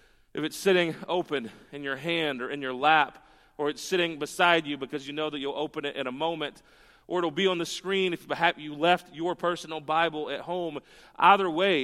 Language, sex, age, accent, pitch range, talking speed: English, male, 40-59, American, 145-190 Hz, 215 wpm